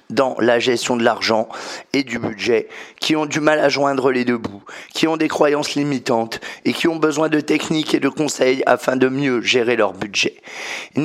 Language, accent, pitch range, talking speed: French, French, 130-170 Hz, 205 wpm